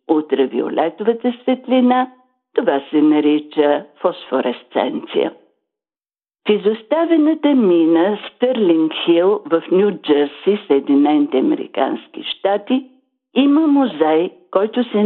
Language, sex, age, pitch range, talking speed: Bulgarian, female, 60-79, 180-260 Hz, 75 wpm